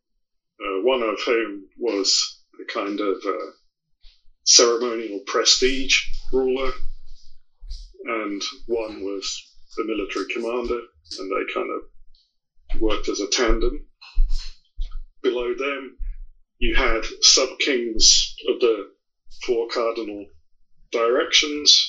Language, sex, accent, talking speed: English, male, British, 100 wpm